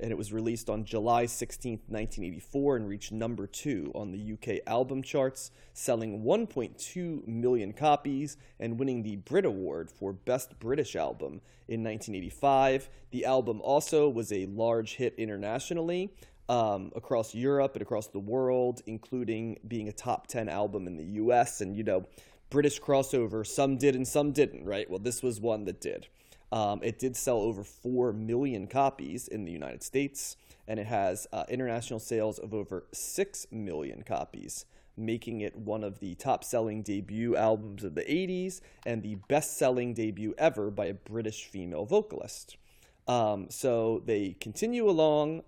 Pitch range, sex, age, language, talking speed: 105-135 Hz, male, 30-49, English, 160 wpm